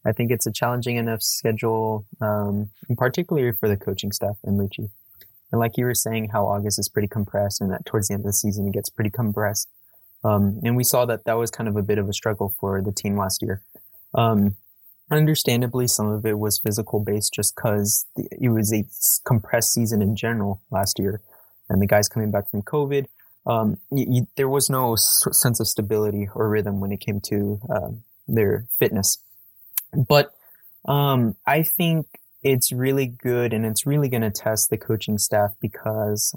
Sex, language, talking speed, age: male, English, 195 wpm, 20-39